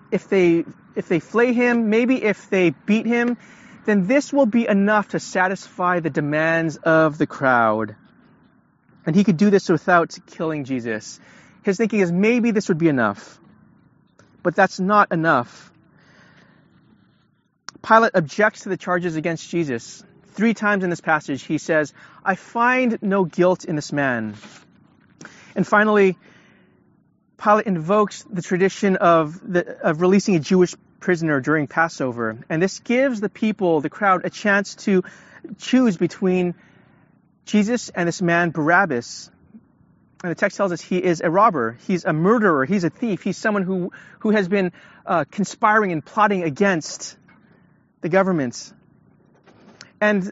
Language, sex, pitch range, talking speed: English, male, 165-210 Hz, 150 wpm